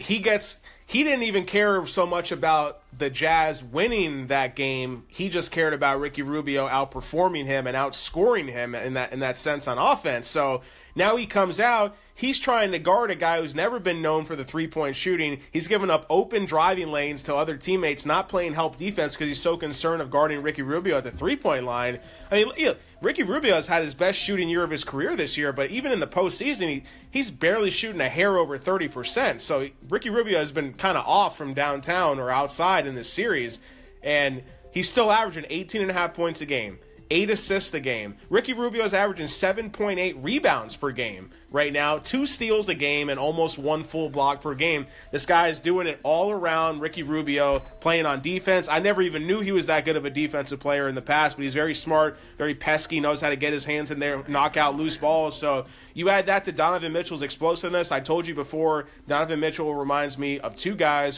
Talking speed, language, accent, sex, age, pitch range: 210 wpm, English, American, male, 30-49, 140-180 Hz